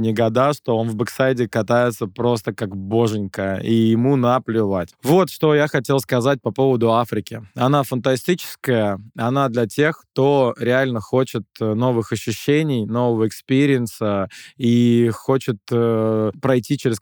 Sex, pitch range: male, 115-135 Hz